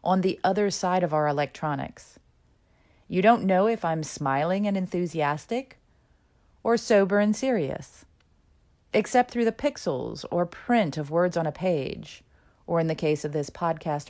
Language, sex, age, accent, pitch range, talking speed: English, female, 40-59, American, 150-235 Hz, 160 wpm